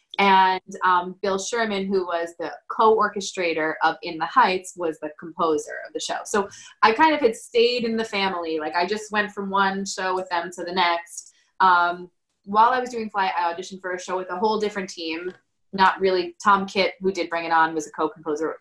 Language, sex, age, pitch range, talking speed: English, female, 20-39, 165-210 Hz, 215 wpm